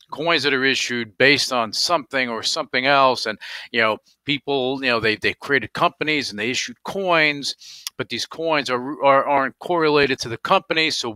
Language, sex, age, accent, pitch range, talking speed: English, male, 50-69, American, 105-135 Hz, 190 wpm